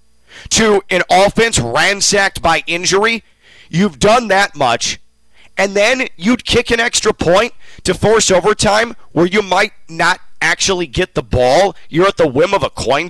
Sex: male